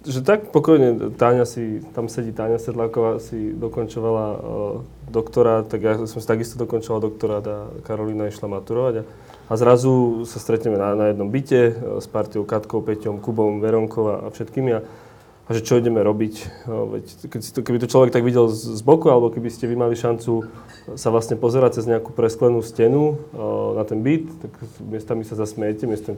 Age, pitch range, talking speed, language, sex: 20-39, 110-120 Hz, 175 wpm, Slovak, male